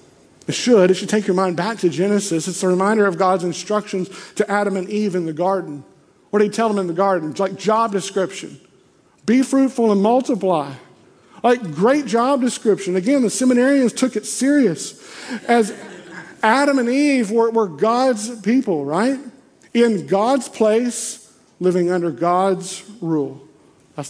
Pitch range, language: 180-240 Hz, English